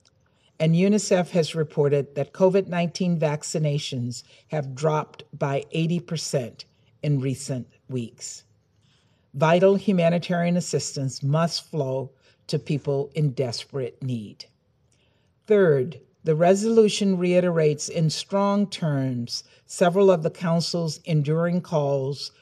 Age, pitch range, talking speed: 50-69, 135-170 Hz, 100 wpm